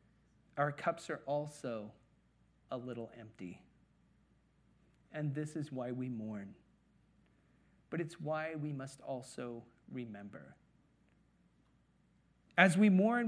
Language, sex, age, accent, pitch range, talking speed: English, male, 40-59, American, 140-195 Hz, 105 wpm